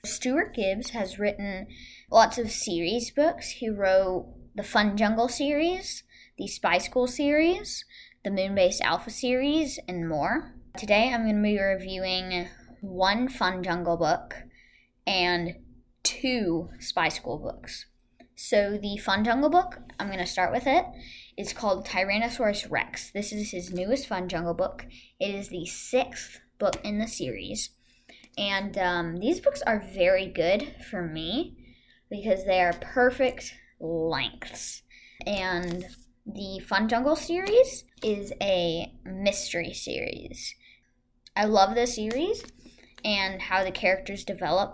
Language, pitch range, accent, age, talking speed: English, 185-245 Hz, American, 10-29, 135 wpm